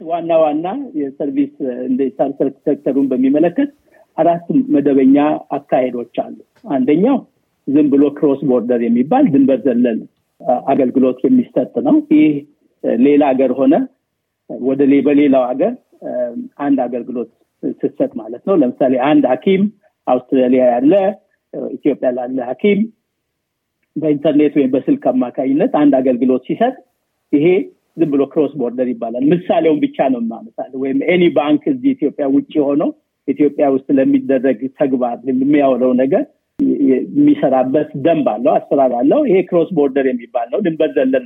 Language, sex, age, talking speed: Amharic, male, 50-69, 110 wpm